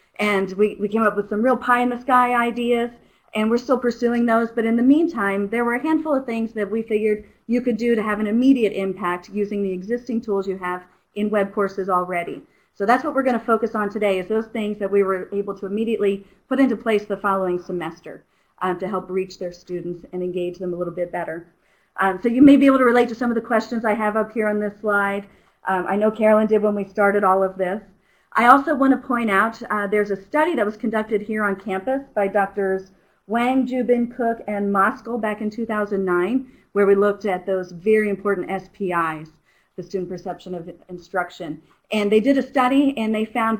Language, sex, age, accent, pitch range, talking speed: English, female, 40-59, American, 190-235 Hz, 220 wpm